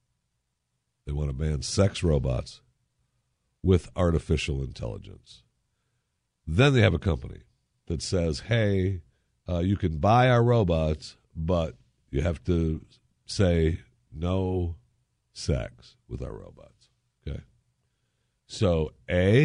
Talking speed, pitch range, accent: 110 wpm, 75-115 Hz, American